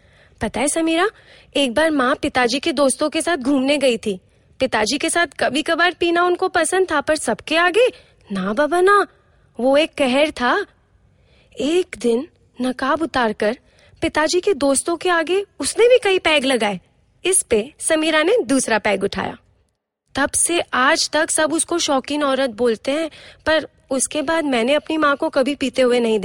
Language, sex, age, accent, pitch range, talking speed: Hindi, female, 20-39, native, 250-345 Hz, 170 wpm